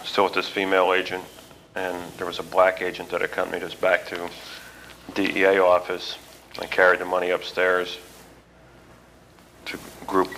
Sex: male